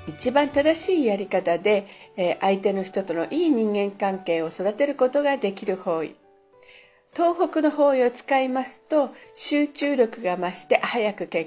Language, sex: Japanese, female